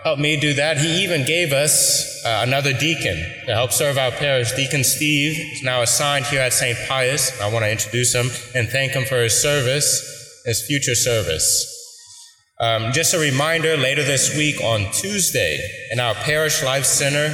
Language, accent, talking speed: English, American, 185 wpm